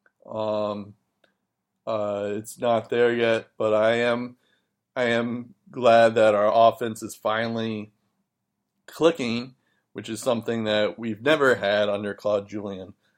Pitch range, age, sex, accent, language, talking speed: 105-120 Hz, 20-39, male, American, English, 125 wpm